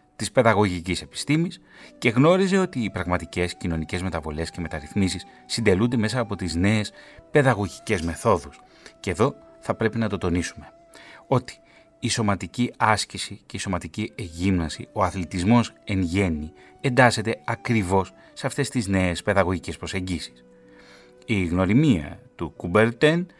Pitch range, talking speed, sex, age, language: 85-115 Hz, 130 wpm, male, 30-49, Greek